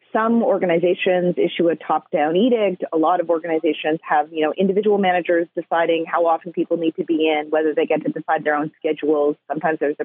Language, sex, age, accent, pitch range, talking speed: English, female, 30-49, American, 160-205 Hz, 205 wpm